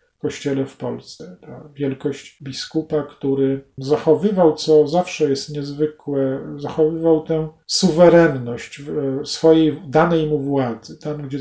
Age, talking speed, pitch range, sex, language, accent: 40-59, 110 wpm, 145-160 Hz, male, Polish, native